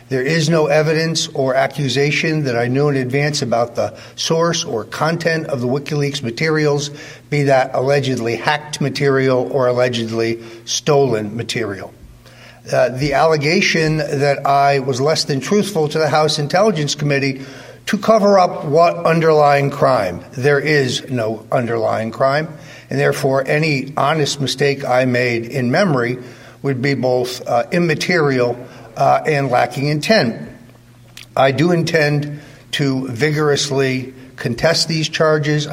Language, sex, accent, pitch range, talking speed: English, male, American, 130-150 Hz, 135 wpm